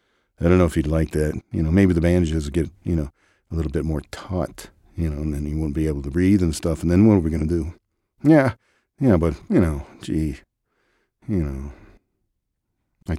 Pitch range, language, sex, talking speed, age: 80-95 Hz, English, male, 225 wpm, 50-69